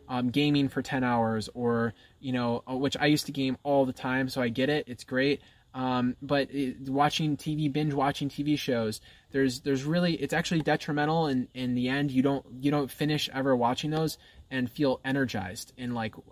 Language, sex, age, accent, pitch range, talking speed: English, male, 20-39, American, 125-150 Hz, 200 wpm